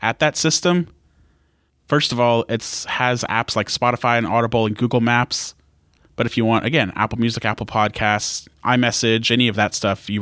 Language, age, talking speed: English, 20-39, 180 wpm